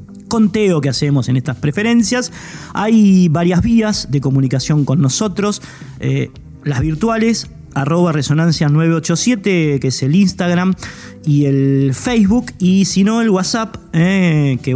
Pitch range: 135-190 Hz